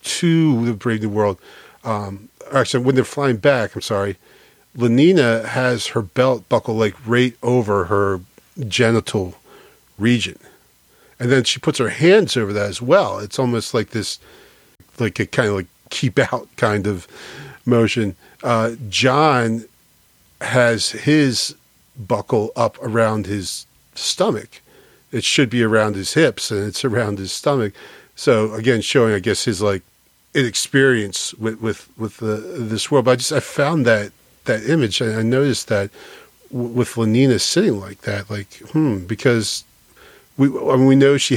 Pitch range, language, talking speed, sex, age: 105-125 Hz, English, 160 wpm, male, 40-59